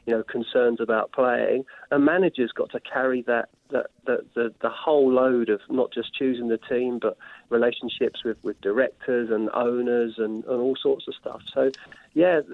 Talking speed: 180 wpm